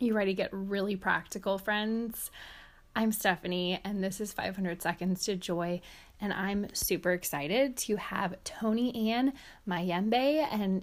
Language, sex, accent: English, female, American